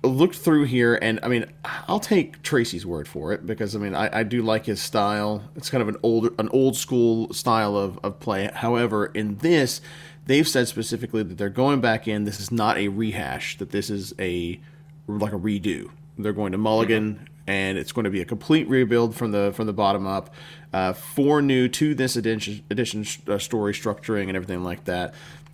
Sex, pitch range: male, 100-130 Hz